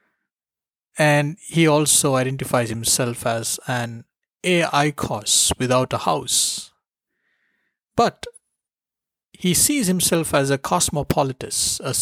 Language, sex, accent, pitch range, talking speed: English, male, Indian, 120-170 Hz, 95 wpm